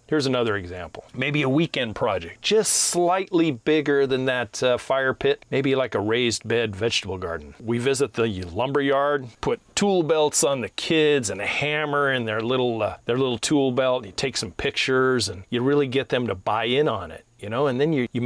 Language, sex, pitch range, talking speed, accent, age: English, male, 115-145 Hz, 210 wpm, American, 40-59